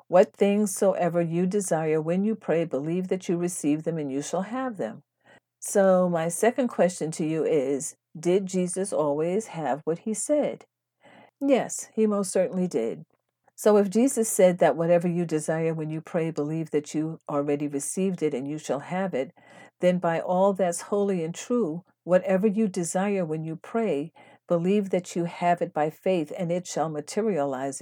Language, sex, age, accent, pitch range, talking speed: English, female, 50-69, American, 155-195 Hz, 180 wpm